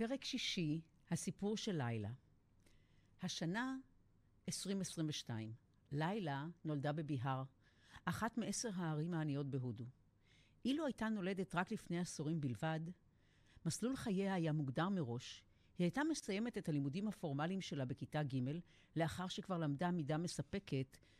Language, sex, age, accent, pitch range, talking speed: Hebrew, female, 50-69, native, 140-185 Hz, 115 wpm